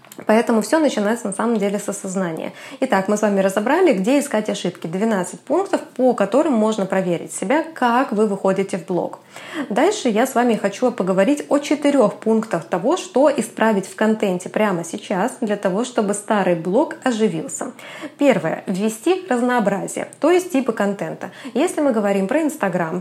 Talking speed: 165 wpm